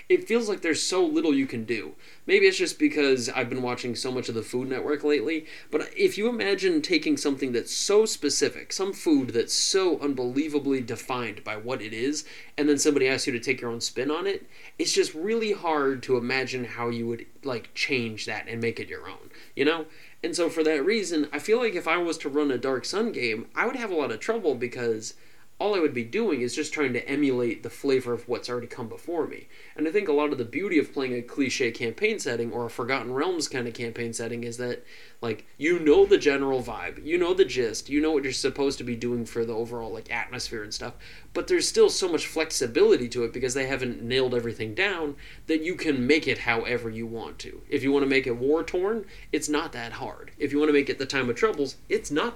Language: English